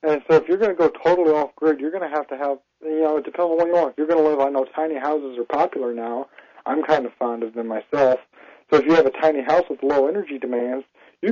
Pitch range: 135-160 Hz